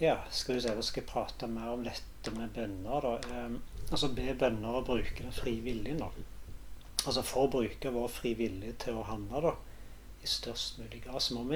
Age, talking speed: 40-59, 195 wpm